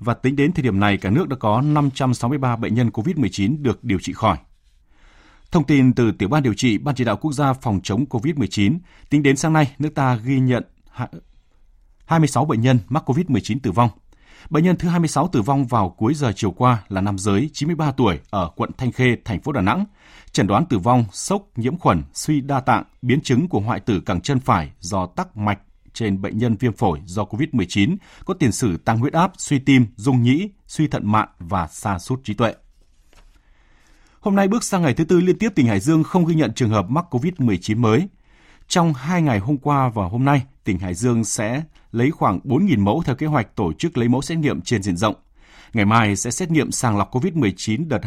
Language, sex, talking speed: Vietnamese, male, 220 wpm